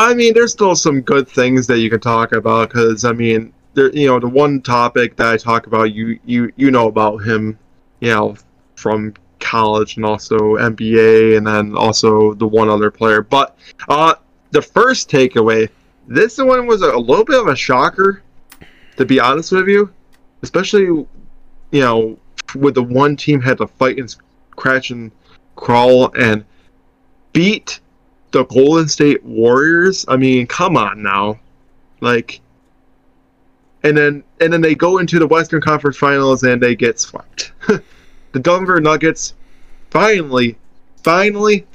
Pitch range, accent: 110-155 Hz, American